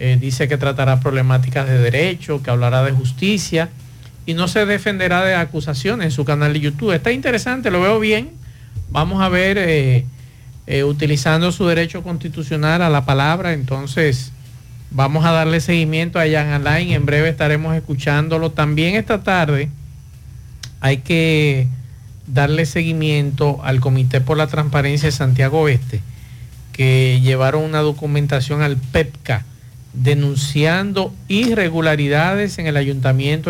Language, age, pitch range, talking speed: Spanish, 50-69, 135-165 Hz, 140 wpm